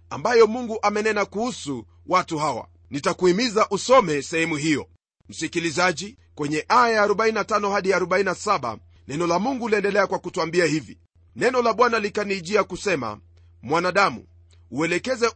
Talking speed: 115 wpm